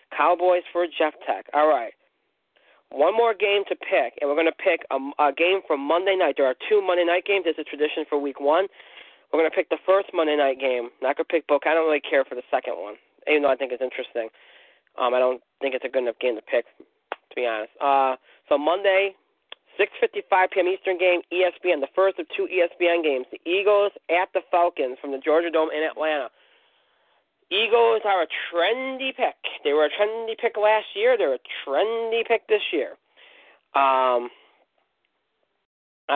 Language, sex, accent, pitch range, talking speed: English, male, American, 145-210 Hz, 200 wpm